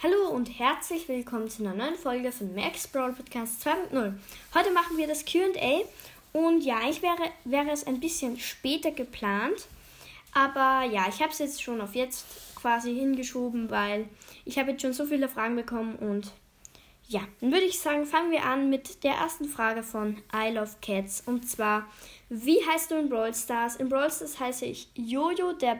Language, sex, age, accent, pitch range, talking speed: German, female, 10-29, German, 240-325 Hz, 185 wpm